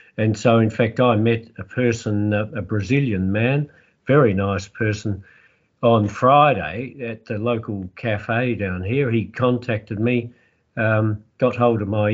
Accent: Australian